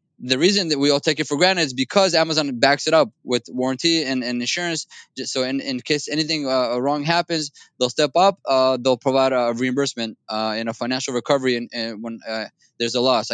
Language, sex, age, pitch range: English, male, 20-39, 130-160 Hz